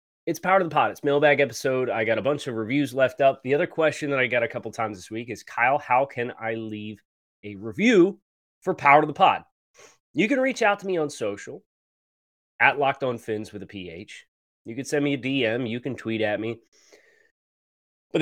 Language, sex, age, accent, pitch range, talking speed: English, male, 30-49, American, 110-165 Hz, 215 wpm